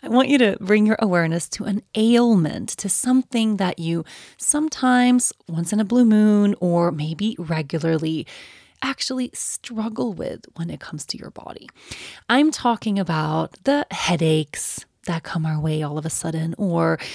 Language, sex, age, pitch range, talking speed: English, female, 20-39, 165-235 Hz, 160 wpm